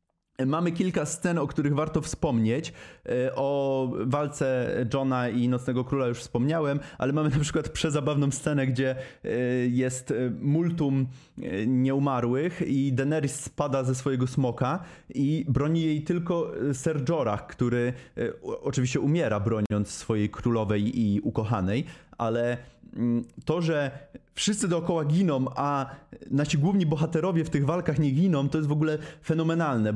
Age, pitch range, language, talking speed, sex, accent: 20-39, 125-165 Hz, Polish, 130 wpm, male, native